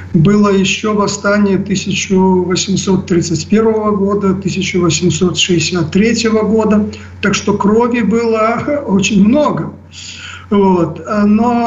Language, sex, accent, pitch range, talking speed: Russian, male, native, 185-210 Hz, 70 wpm